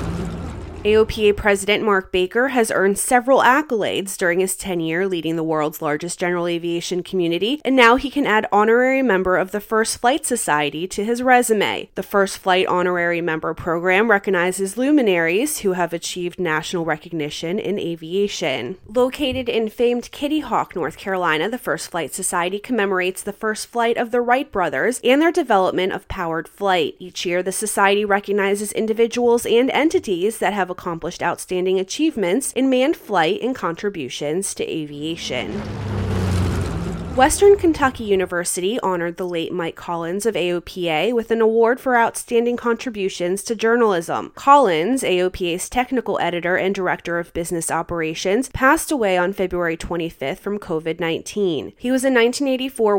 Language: English